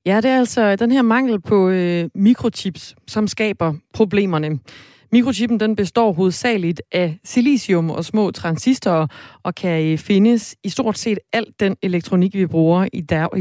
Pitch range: 170-215 Hz